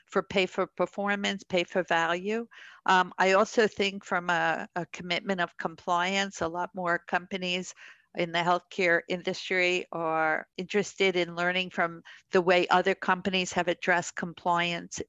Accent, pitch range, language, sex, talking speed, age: American, 180-210 Hz, English, female, 145 wpm, 50-69